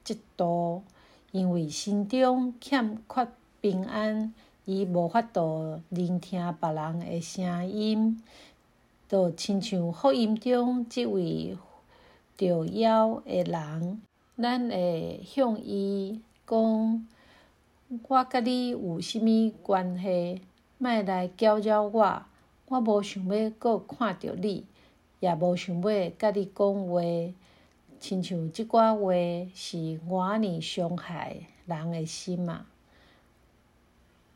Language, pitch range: Chinese, 175-220 Hz